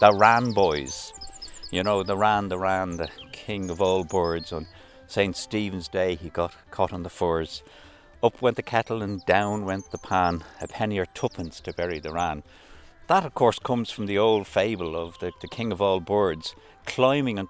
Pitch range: 85-110 Hz